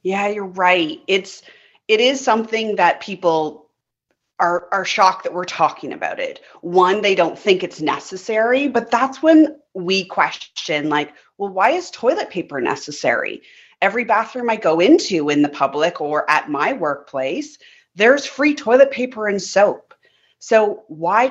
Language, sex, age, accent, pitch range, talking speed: English, female, 30-49, American, 175-255 Hz, 155 wpm